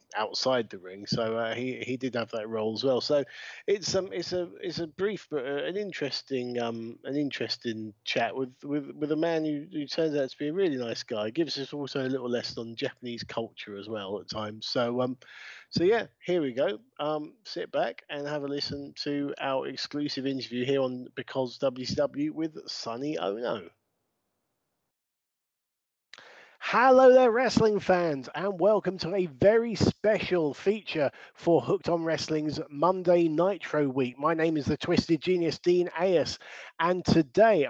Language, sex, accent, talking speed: English, male, British, 175 wpm